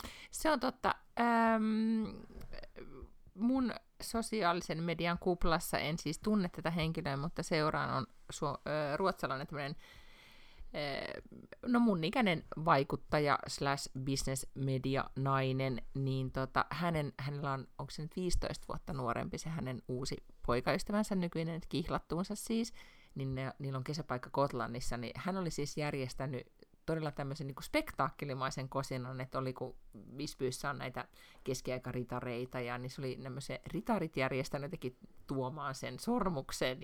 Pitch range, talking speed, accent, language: 135-205 Hz, 130 wpm, native, Finnish